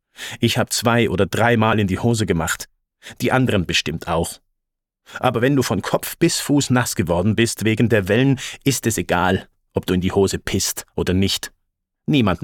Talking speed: 185 wpm